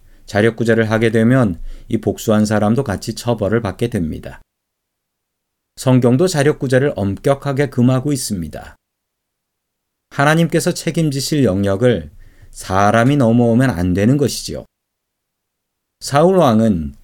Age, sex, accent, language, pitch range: 40-59, male, native, Korean, 100-135 Hz